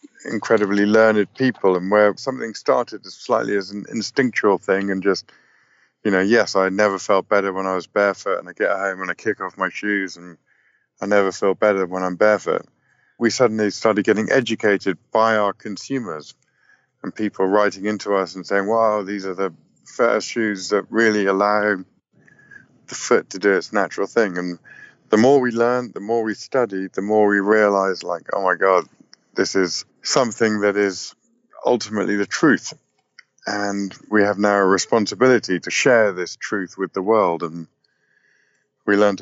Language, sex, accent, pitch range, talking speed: English, male, British, 95-110 Hz, 175 wpm